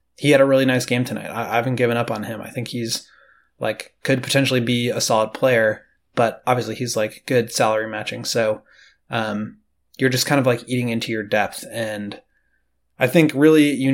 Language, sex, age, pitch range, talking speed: English, male, 20-39, 110-130 Hz, 200 wpm